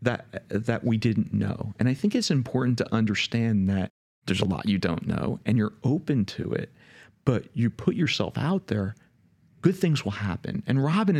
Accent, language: American, English